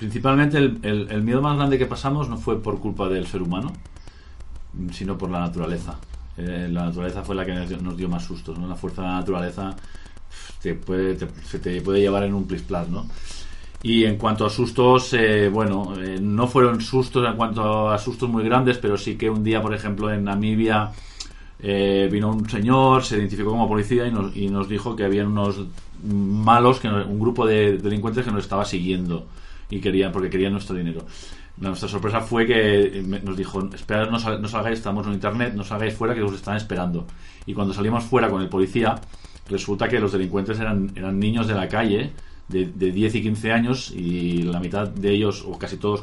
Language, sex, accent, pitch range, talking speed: Spanish, male, Spanish, 95-110 Hz, 205 wpm